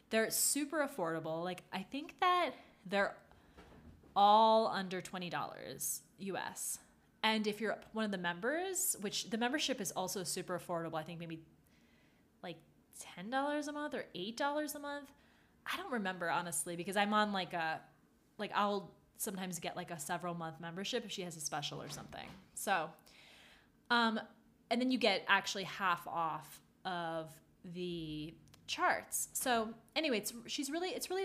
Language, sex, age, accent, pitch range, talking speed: English, female, 20-39, American, 180-240 Hz, 155 wpm